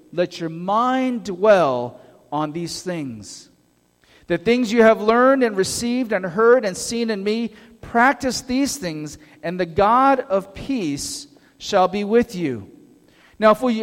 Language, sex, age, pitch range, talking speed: English, male, 40-59, 190-255 Hz, 150 wpm